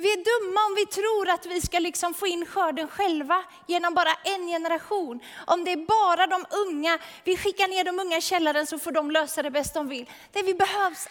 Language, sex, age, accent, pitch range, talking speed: Swedish, female, 30-49, native, 325-390 Hz, 225 wpm